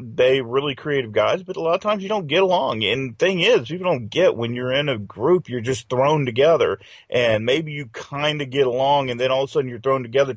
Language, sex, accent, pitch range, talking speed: English, male, American, 110-140 Hz, 255 wpm